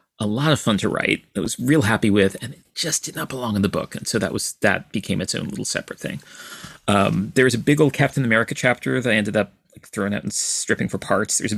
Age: 30-49